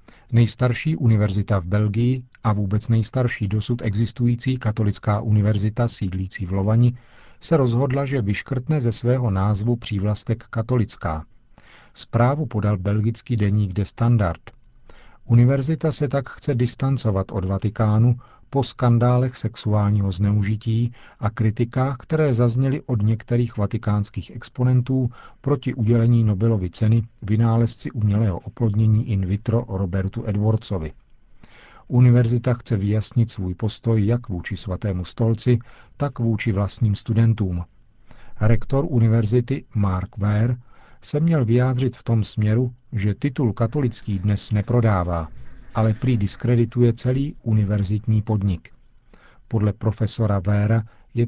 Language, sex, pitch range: Czech, male, 105-125 Hz